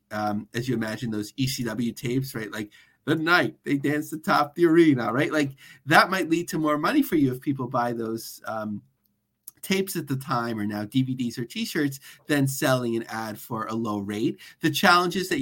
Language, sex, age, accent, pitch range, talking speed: English, male, 30-49, American, 120-150 Hz, 200 wpm